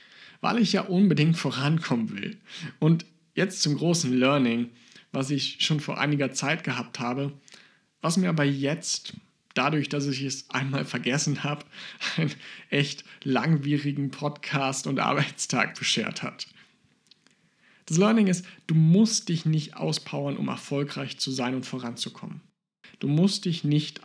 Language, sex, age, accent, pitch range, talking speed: German, male, 50-69, German, 135-180 Hz, 140 wpm